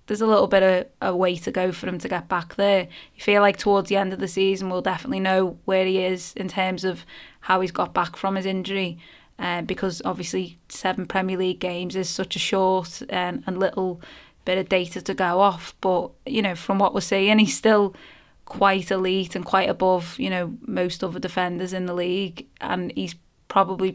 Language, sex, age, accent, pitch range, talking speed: English, female, 20-39, British, 180-195 Hz, 215 wpm